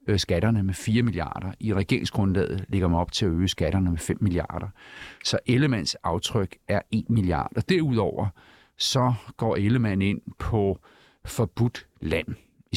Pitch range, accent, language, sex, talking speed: 95-115 Hz, native, Danish, male, 150 wpm